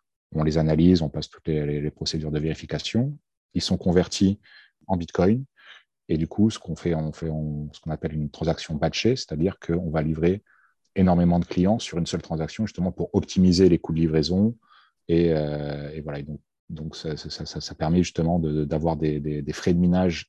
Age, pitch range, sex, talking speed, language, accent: 30-49, 80-90 Hz, male, 210 wpm, French, French